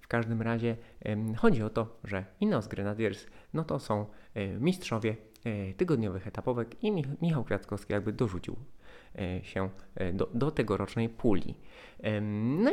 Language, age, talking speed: Polish, 20-39, 125 wpm